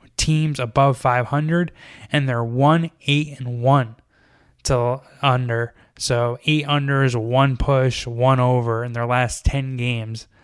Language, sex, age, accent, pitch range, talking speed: English, male, 20-39, American, 120-145 Hz, 130 wpm